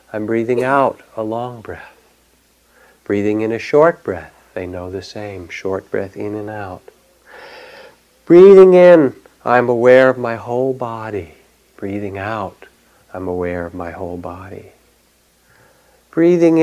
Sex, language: male, English